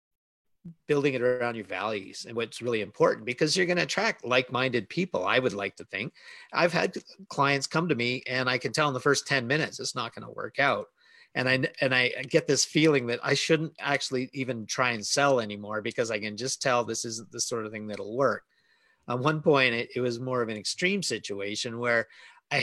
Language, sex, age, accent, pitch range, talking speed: English, male, 40-59, American, 115-145 Hz, 225 wpm